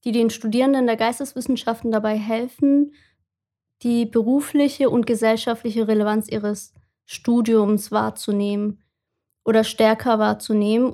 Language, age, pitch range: German, 20-39, 220-250 Hz